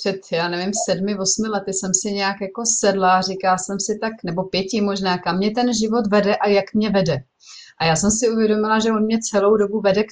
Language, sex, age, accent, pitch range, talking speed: Czech, female, 30-49, native, 175-205 Hz, 235 wpm